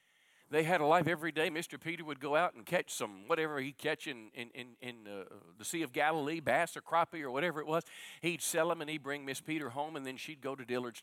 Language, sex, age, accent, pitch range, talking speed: English, male, 50-69, American, 140-185 Hz, 260 wpm